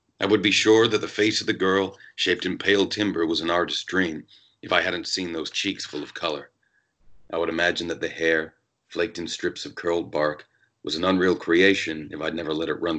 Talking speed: 225 wpm